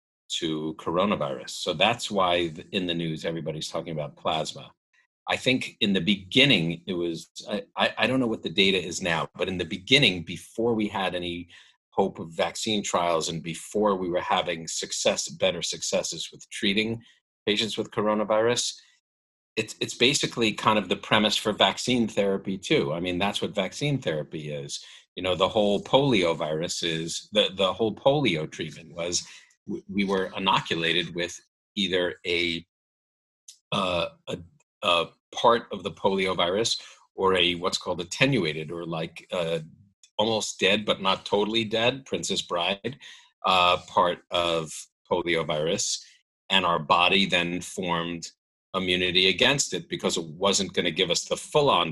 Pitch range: 85-105 Hz